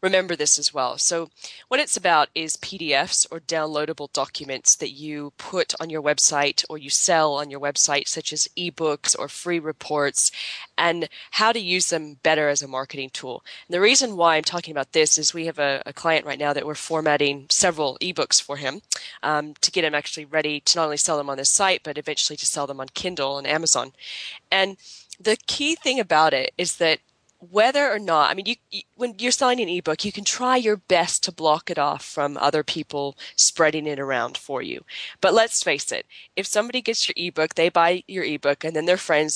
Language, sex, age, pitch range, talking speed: English, female, 20-39, 150-195 Hz, 215 wpm